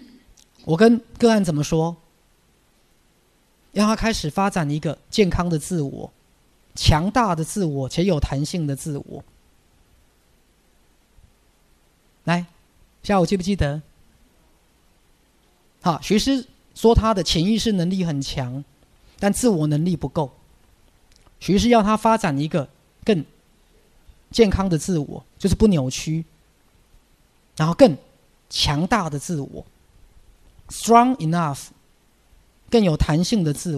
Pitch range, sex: 145-205 Hz, male